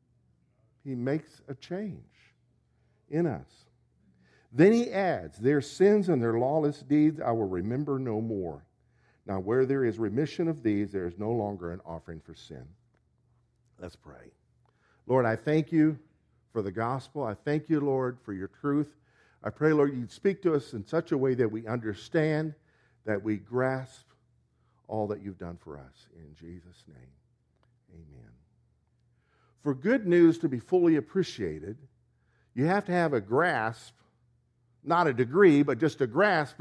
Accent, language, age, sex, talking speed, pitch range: American, English, 50-69, male, 160 wpm, 105-150 Hz